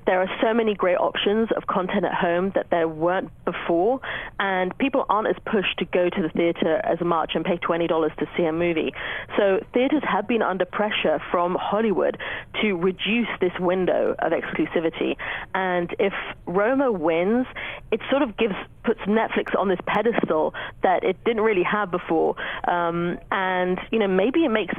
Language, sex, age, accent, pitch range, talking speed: English, female, 30-49, British, 175-210 Hz, 175 wpm